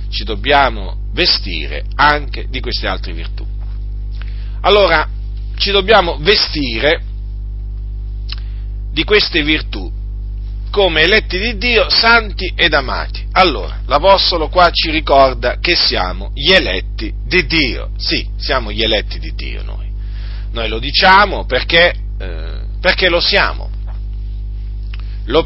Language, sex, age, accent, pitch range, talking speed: Italian, male, 40-59, native, 100-140 Hz, 115 wpm